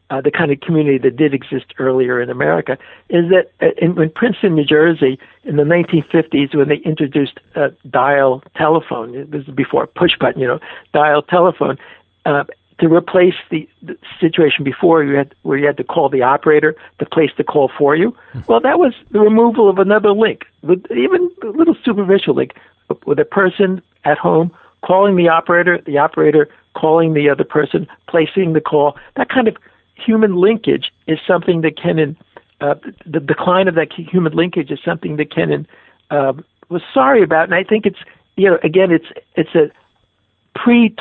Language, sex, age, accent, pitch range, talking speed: English, male, 60-79, American, 145-185 Hz, 185 wpm